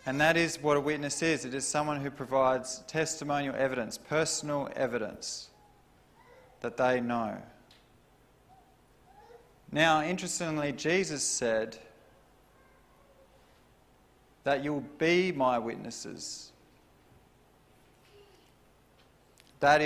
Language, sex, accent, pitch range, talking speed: English, male, Australian, 125-150 Hz, 90 wpm